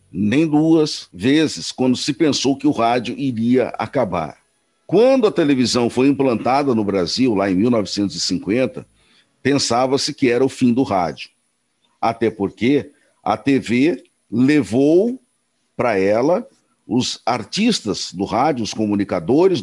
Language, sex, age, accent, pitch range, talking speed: Portuguese, male, 60-79, Brazilian, 115-160 Hz, 125 wpm